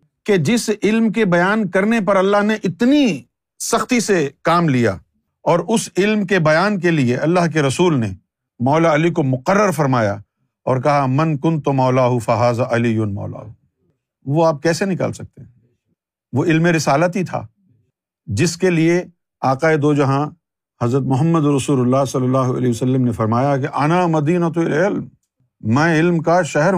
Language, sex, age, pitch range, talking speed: Urdu, male, 50-69, 130-180 Hz, 165 wpm